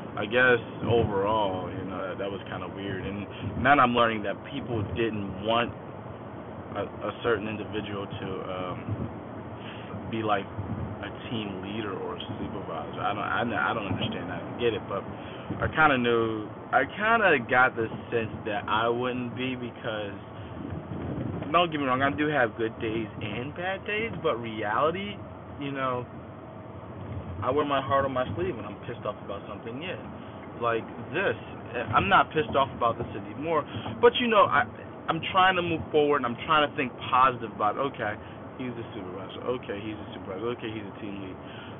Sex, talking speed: male, 185 wpm